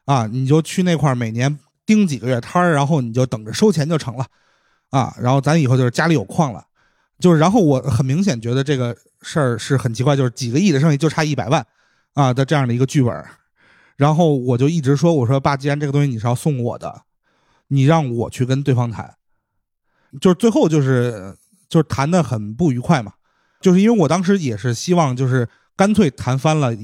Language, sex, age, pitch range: Chinese, male, 30-49, 125-170 Hz